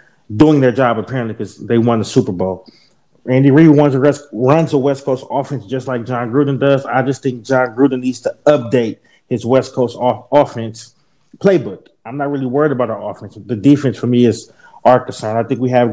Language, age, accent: English, 30-49, American